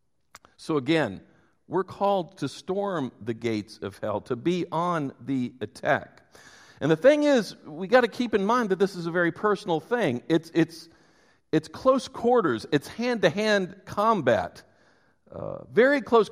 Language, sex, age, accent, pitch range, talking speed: English, male, 50-69, American, 145-220 Hz, 160 wpm